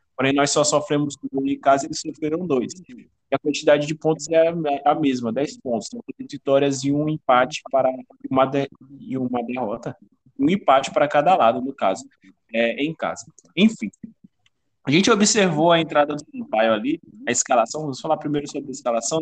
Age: 20-39